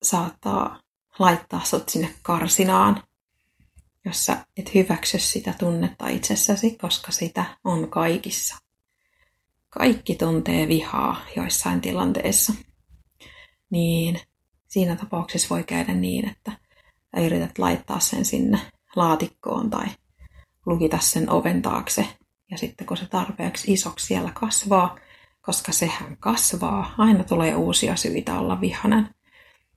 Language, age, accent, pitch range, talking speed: Finnish, 30-49, native, 165-215 Hz, 110 wpm